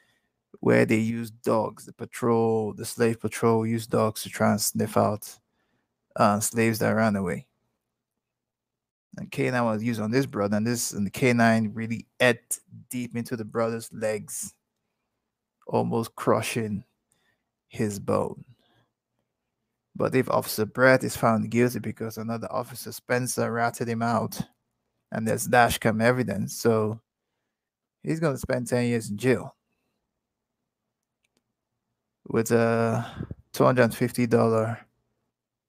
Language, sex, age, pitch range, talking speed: English, male, 20-39, 110-125 Hz, 125 wpm